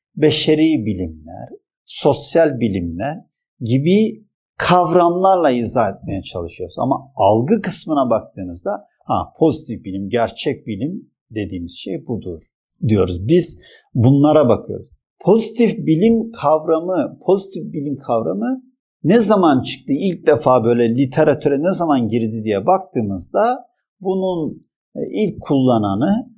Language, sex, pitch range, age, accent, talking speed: Turkish, male, 125-185 Hz, 50-69, native, 105 wpm